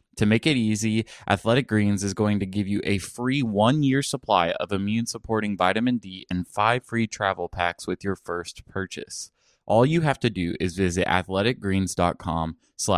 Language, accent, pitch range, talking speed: English, American, 90-115 Hz, 165 wpm